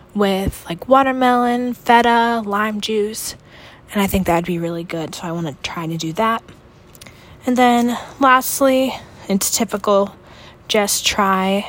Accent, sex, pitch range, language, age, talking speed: American, female, 185-220 Hz, English, 20-39, 150 wpm